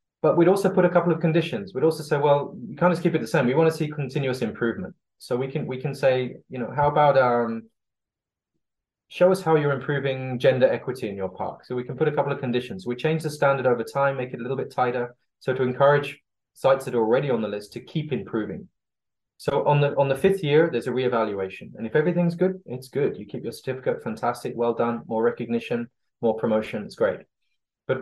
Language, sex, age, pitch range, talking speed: English, male, 20-39, 115-145 Hz, 235 wpm